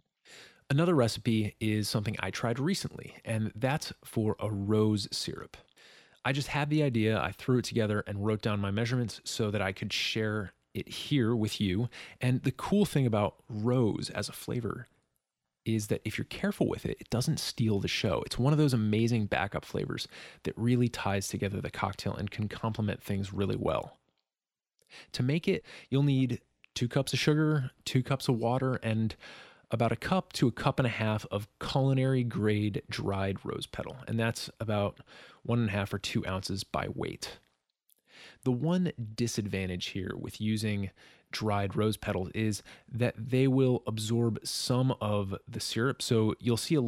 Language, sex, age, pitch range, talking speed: English, male, 20-39, 100-130 Hz, 180 wpm